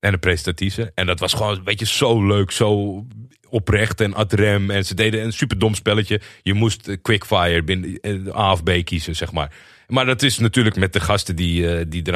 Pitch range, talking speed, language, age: 95-115 Hz, 200 wpm, Dutch, 30-49